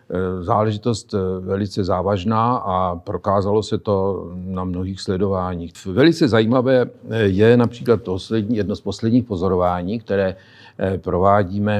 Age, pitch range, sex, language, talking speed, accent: 50-69, 95-115 Hz, male, Czech, 100 wpm, native